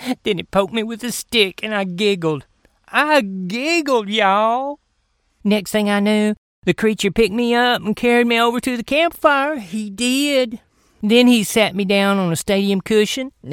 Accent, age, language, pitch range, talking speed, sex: American, 40-59, English, 185-230 Hz, 180 wpm, male